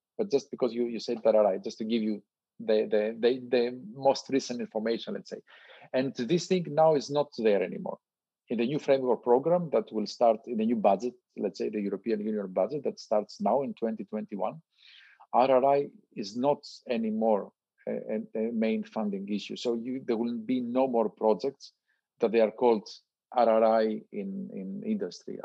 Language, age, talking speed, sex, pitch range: English, 40-59, 180 wpm, male, 110-130 Hz